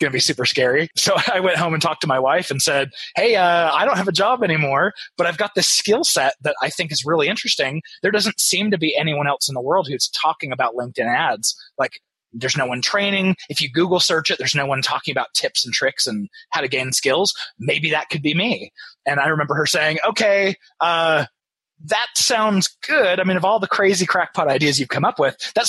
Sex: male